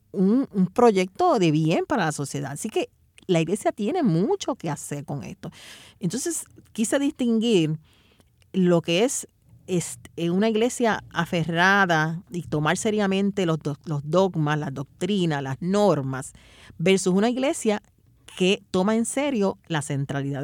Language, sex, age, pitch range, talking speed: Spanish, female, 40-59, 155-225 Hz, 130 wpm